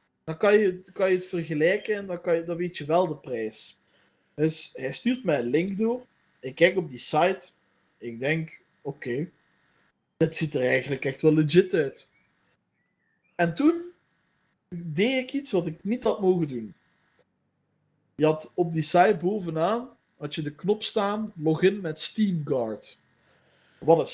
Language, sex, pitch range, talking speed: Dutch, male, 155-205 Hz, 170 wpm